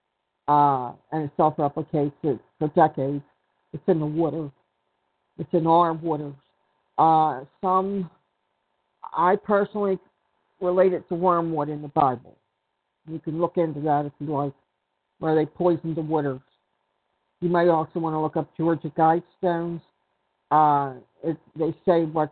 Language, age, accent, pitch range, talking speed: English, 60-79, American, 150-180 Hz, 145 wpm